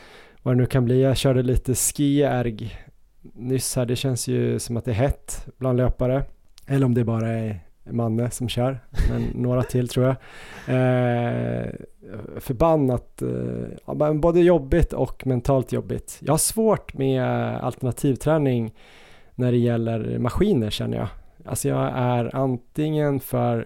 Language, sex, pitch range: Swedish, male, 115-130 Hz